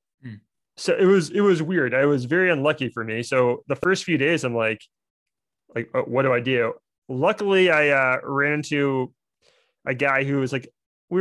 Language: English